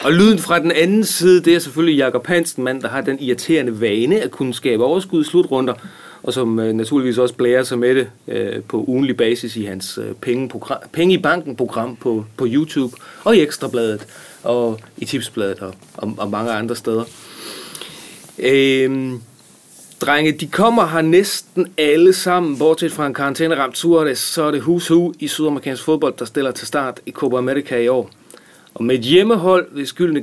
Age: 30-49